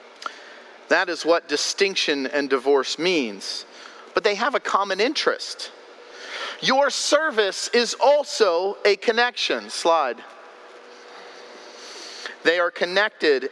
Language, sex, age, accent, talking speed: English, male, 40-59, American, 100 wpm